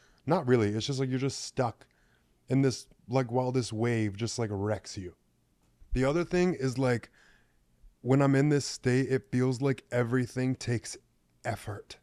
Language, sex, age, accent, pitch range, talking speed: English, male, 20-39, American, 105-130 Hz, 170 wpm